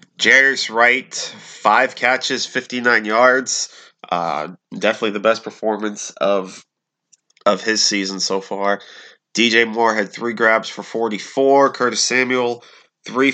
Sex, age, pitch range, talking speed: male, 20-39, 100-125 Hz, 120 wpm